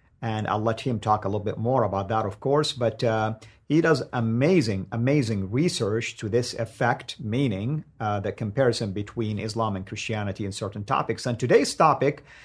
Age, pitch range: 50-69, 110-135 Hz